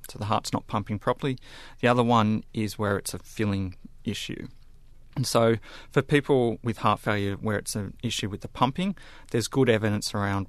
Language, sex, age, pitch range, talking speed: English, male, 30-49, 105-120 Hz, 190 wpm